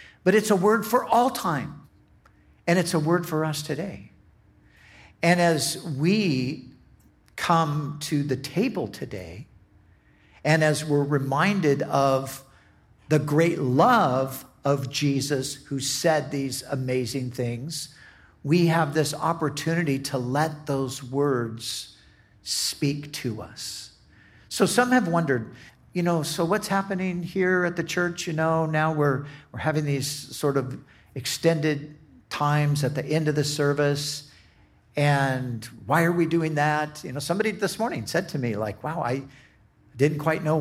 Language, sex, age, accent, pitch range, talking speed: English, male, 50-69, American, 130-170 Hz, 145 wpm